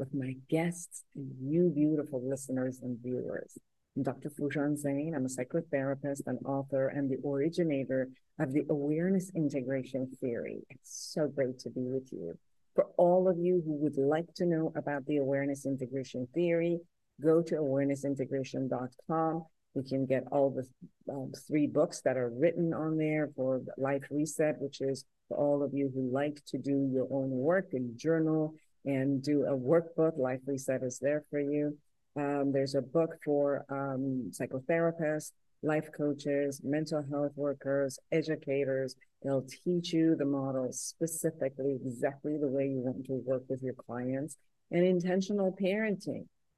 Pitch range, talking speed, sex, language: 130-155 Hz, 160 wpm, female, English